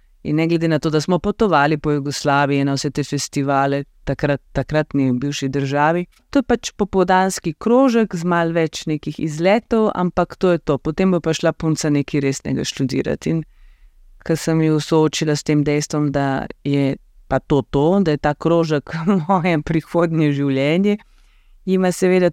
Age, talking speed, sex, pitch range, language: 30-49, 160 wpm, female, 145-190 Hz, German